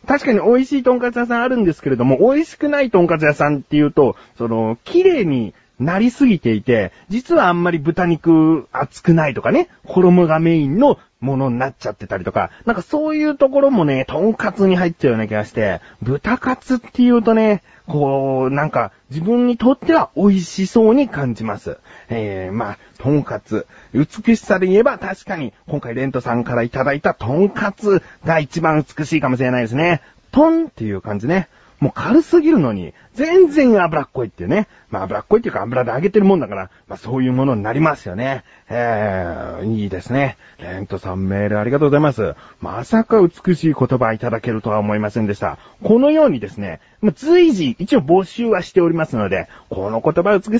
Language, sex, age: Japanese, male, 40-59